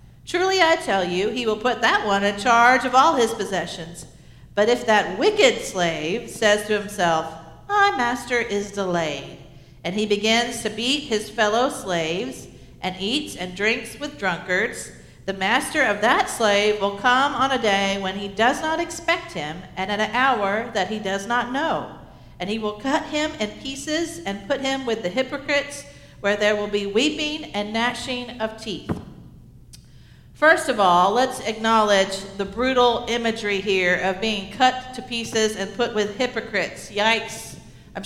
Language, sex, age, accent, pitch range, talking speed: English, female, 50-69, American, 200-260 Hz, 170 wpm